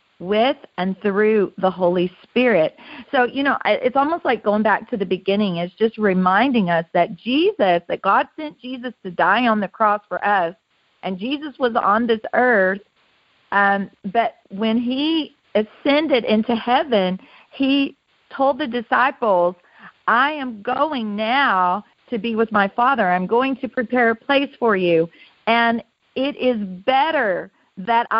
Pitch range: 205-275 Hz